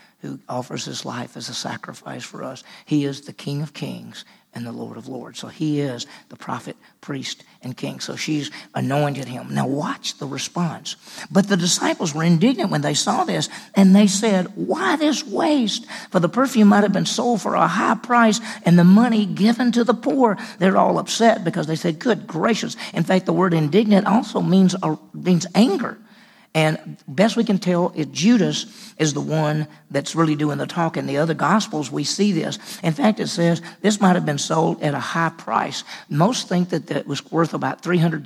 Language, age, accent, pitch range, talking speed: English, 50-69, American, 160-215 Hz, 200 wpm